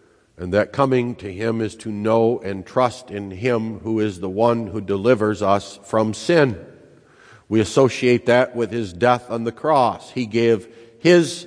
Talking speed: 175 wpm